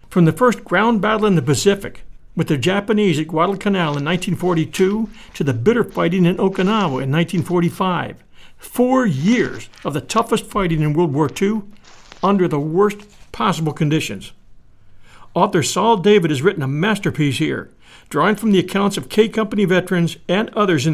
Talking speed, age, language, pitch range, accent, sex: 165 wpm, 60-79, English, 160-215 Hz, American, male